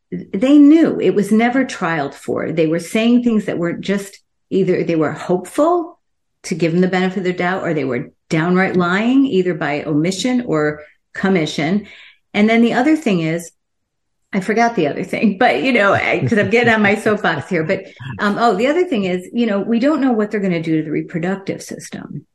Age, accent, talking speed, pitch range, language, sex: 50-69, American, 210 wpm, 165-225 Hz, English, female